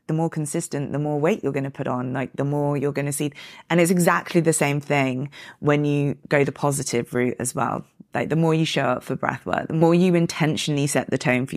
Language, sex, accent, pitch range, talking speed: English, female, British, 140-175 Hz, 250 wpm